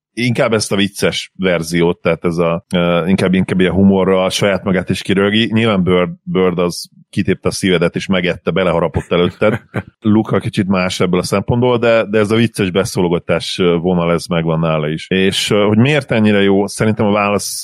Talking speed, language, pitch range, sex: 185 wpm, Hungarian, 85-100 Hz, male